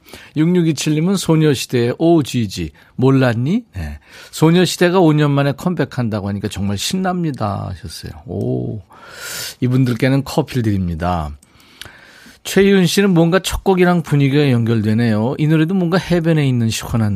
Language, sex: Korean, male